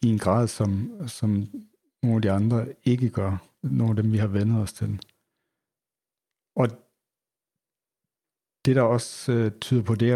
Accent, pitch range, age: native, 110-130 Hz, 60-79